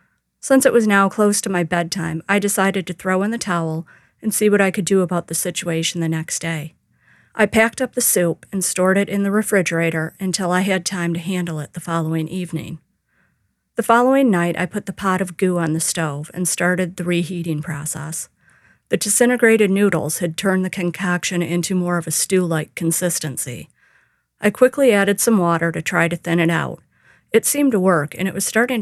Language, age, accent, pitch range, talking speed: English, 40-59, American, 165-195 Hz, 200 wpm